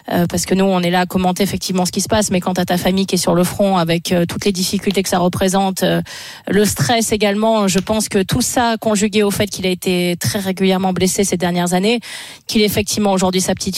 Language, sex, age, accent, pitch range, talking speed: French, female, 30-49, French, 185-215 Hz, 255 wpm